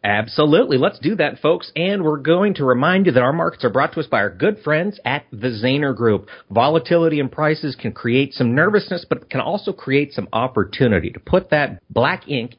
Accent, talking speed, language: American, 215 wpm, English